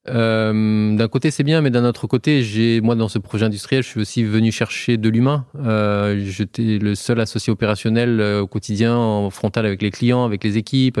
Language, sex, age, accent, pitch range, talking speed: French, male, 20-39, French, 105-125 Hz, 205 wpm